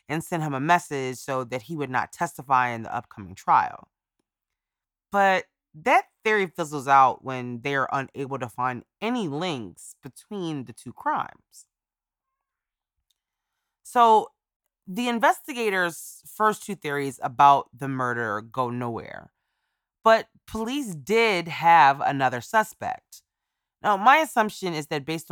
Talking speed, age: 130 wpm, 20-39